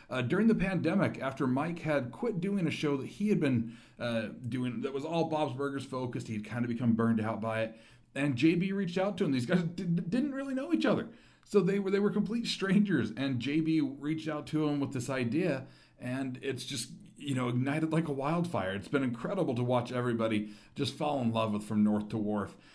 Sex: male